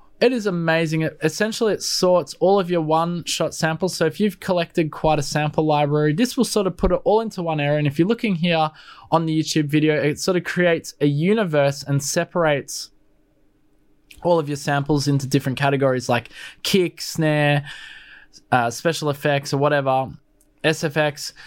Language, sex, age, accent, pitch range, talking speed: English, male, 20-39, Australian, 140-180 Hz, 175 wpm